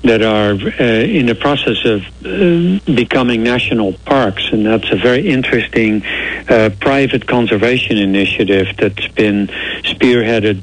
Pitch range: 105-130 Hz